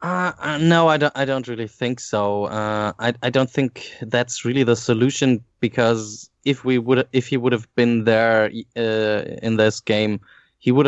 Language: English